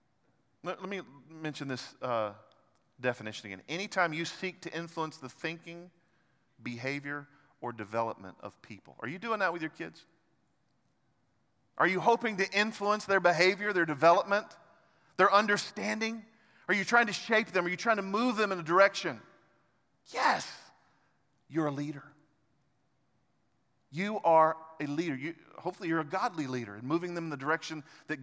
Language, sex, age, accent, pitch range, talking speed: English, male, 40-59, American, 150-200 Hz, 155 wpm